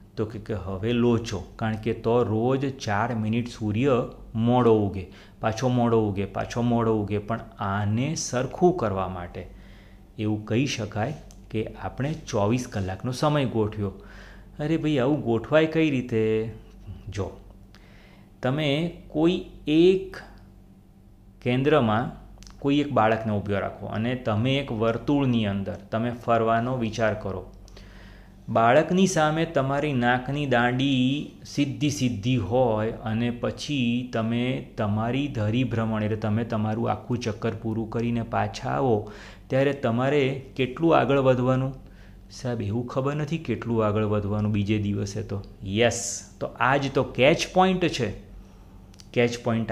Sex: male